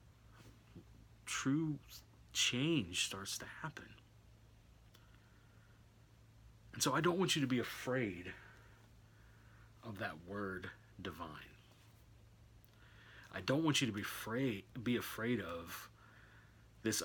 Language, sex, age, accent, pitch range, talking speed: English, male, 40-59, American, 110-115 Hz, 100 wpm